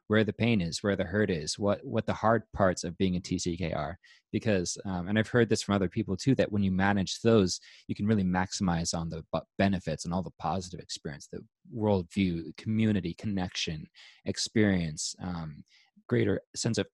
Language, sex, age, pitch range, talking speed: English, male, 20-39, 95-120 Hz, 190 wpm